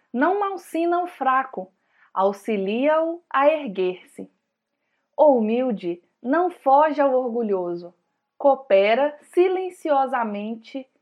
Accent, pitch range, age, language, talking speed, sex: Brazilian, 215-315 Hz, 20-39, Portuguese, 80 wpm, female